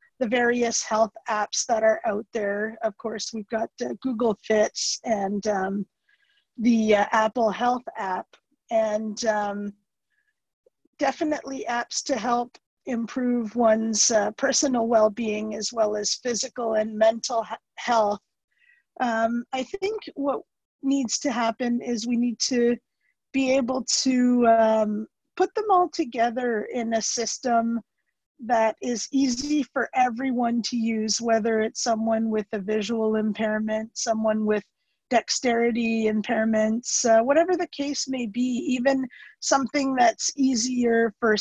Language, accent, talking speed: English, American, 130 wpm